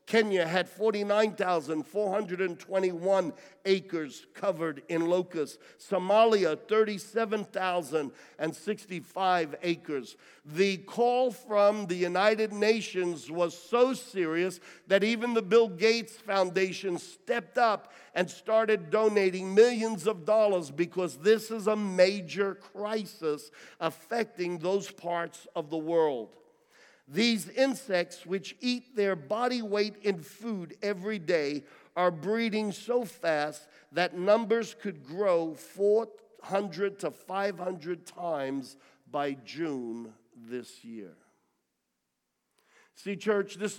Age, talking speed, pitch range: 50-69, 105 wpm, 165-210 Hz